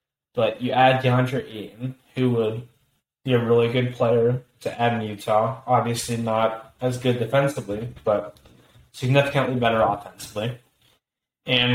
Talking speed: 135 wpm